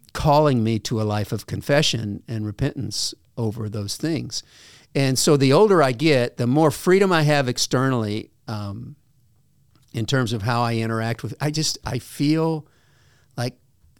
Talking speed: 160 wpm